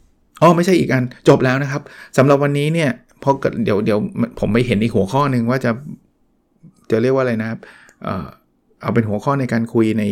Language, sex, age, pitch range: Thai, male, 20-39, 120-145 Hz